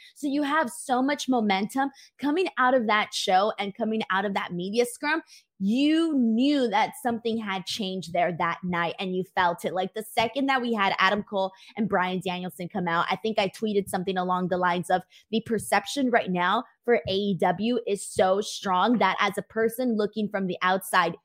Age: 20-39